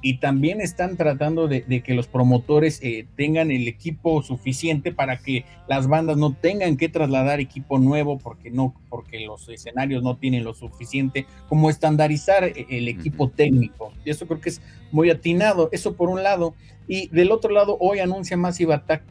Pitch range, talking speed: 120-150 Hz, 175 wpm